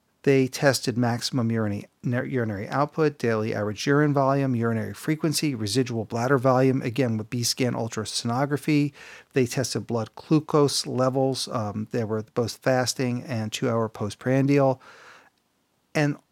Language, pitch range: English, 115-140 Hz